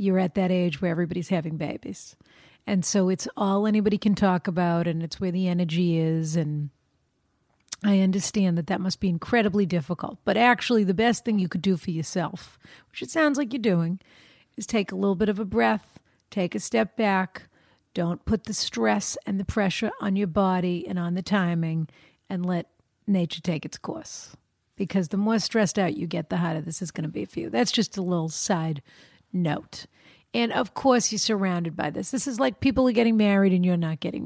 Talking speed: 210 wpm